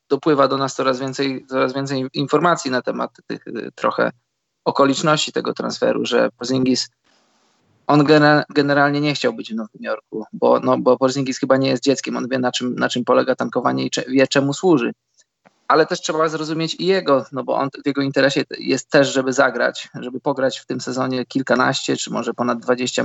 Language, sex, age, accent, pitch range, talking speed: Polish, male, 20-39, native, 125-145 Hz, 185 wpm